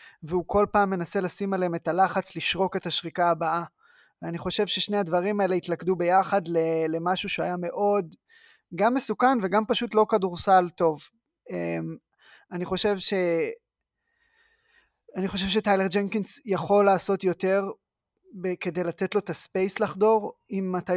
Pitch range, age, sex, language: 175-205 Hz, 20-39, male, Hebrew